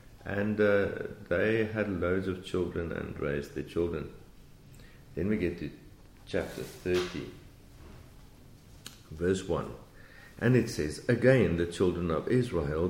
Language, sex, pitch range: English, male, 80-100 Hz